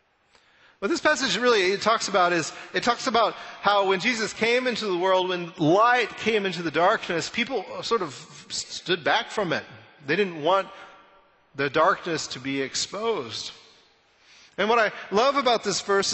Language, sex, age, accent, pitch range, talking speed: English, male, 40-59, American, 150-195 Hz, 165 wpm